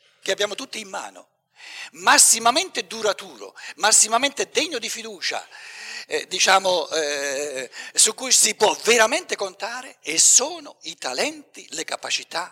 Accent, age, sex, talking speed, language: native, 60-79, male, 125 wpm, Italian